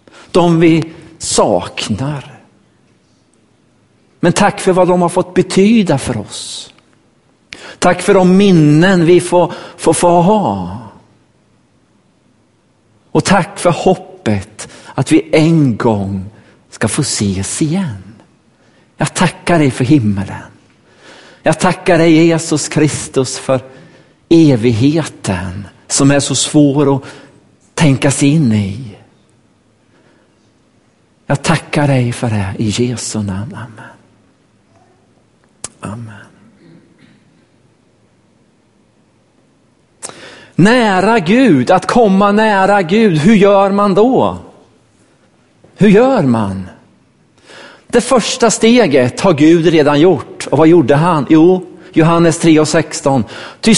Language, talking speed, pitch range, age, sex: Swedish, 105 wpm, 125-185 Hz, 50-69, male